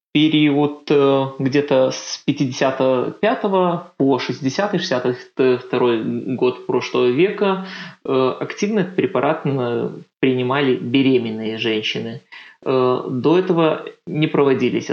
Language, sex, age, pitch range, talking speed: Russian, male, 20-39, 125-160 Hz, 80 wpm